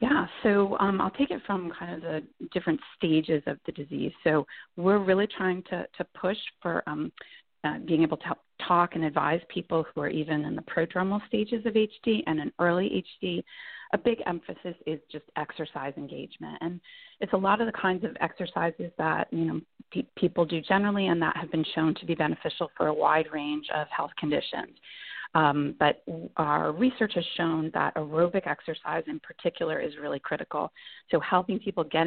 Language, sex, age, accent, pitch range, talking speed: English, female, 30-49, American, 155-190 Hz, 190 wpm